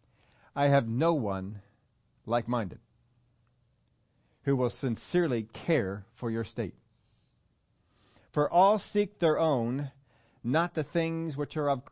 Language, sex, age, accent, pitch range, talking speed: English, male, 50-69, American, 115-150 Hz, 115 wpm